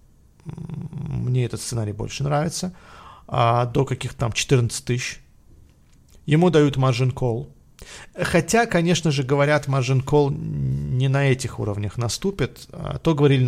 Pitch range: 120-150 Hz